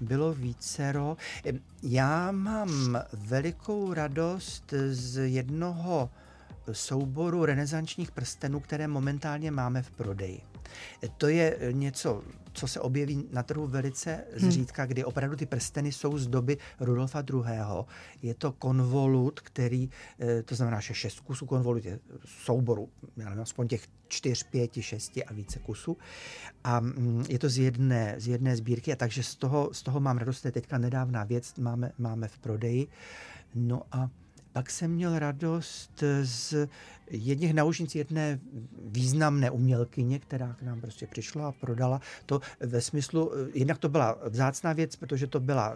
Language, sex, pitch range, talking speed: Czech, male, 120-150 Hz, 145 wpm